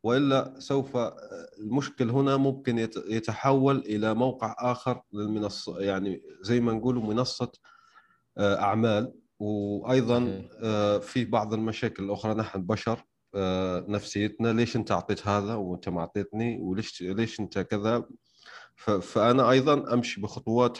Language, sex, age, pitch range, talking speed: Arabic, male, 30-49, 95-120 Hz, 115 wpm